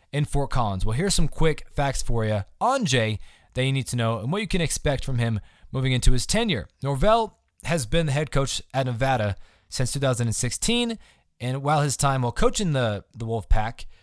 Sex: male